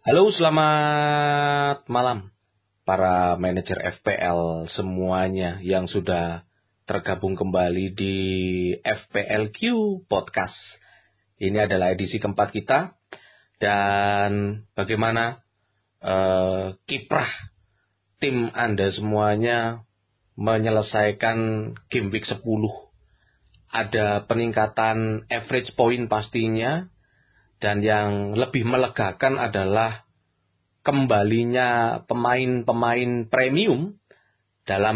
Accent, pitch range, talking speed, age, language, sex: native, 100-120 Hz, 75 wpm, 30-49, Indonesian, male